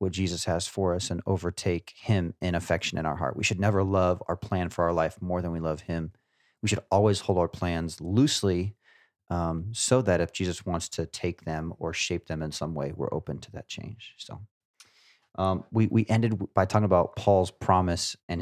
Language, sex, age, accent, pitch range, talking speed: English, male, 30-49, American, 85-100 Hz, 210 wpm